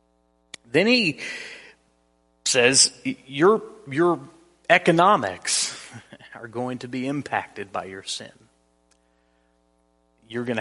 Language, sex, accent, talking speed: English, male, American, 90 wpm